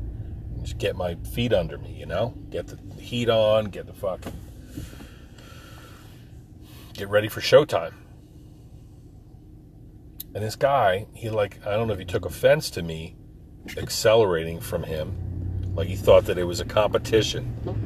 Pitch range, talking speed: 90-110 Hz, 145 wpm